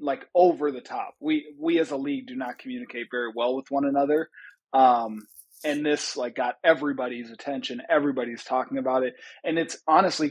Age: 20-39